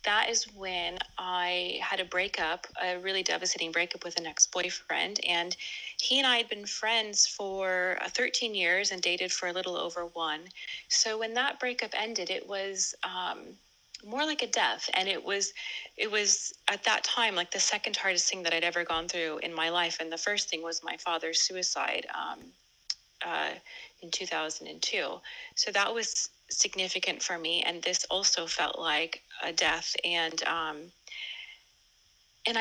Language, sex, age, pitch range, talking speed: English, female, 30-49, 175-225 Hz, 170 wpm